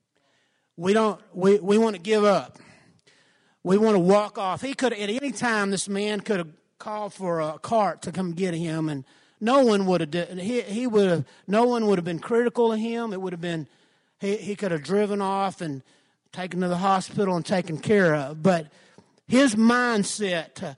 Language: English